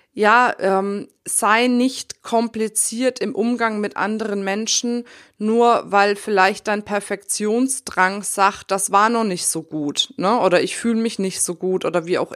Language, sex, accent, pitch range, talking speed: German, female, German, 195-245 Hz, 160 wpm